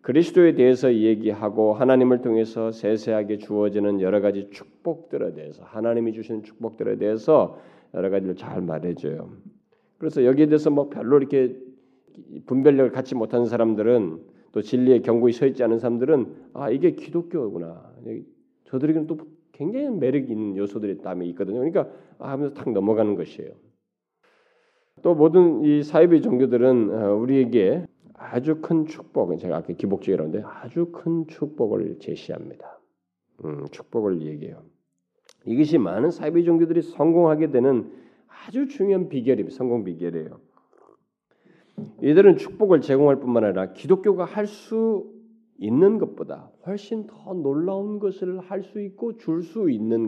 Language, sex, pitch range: Korean, male, 110-170 Hz